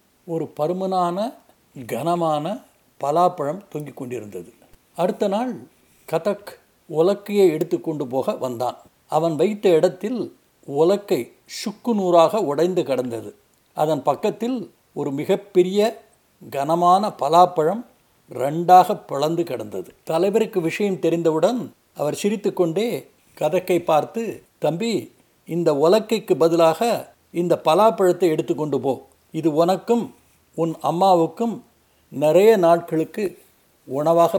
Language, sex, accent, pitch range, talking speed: Tamil, male, native, 155-195 Hz, 90 wpm